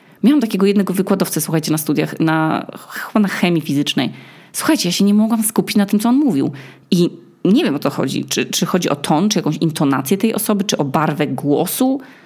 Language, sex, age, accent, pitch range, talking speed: Polish, female, 20-39, native, 160-230 Hz, 205 wpm